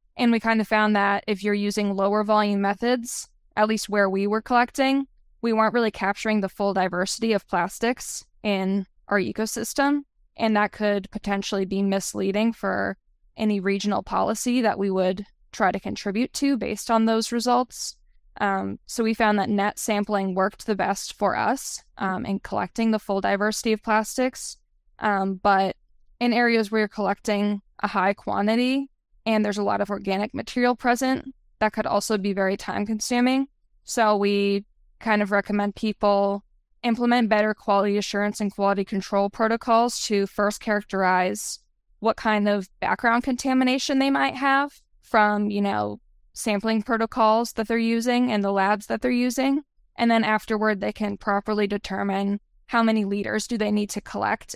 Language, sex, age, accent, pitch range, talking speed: English, female, 10-29, American, 200-230 Hz, 165 wpm